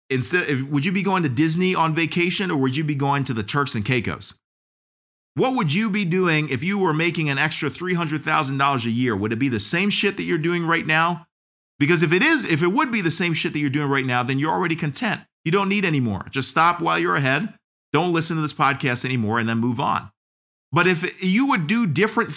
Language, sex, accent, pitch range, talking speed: English, male, American, 145-190 Hz, 245 wpm